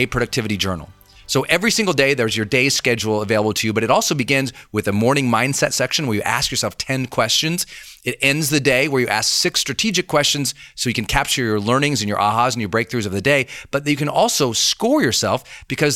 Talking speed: 225 wpm